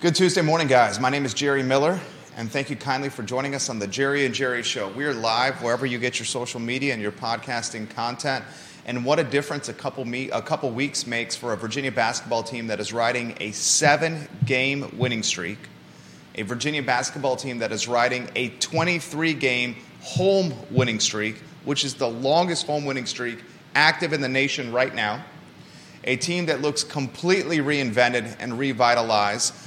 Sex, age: male, 30-49